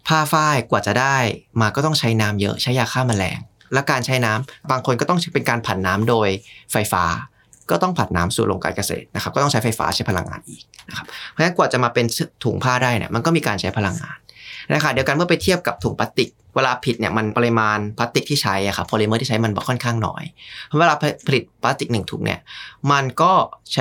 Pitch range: 110-135 Hz